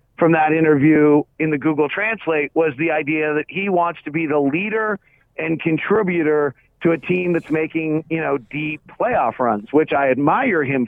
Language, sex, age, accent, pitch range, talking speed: English, male, 40-59, American, 130-155 Hz, 180 wpm